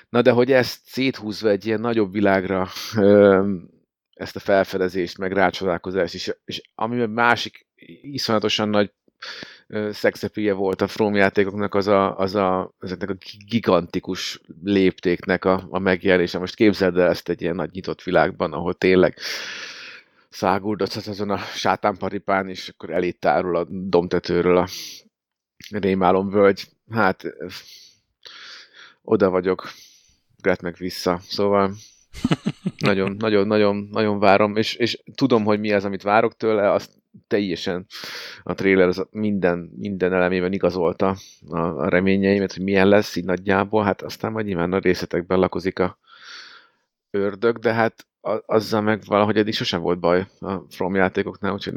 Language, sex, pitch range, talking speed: Hungarian, male, 90-105 Hz, 130 wpm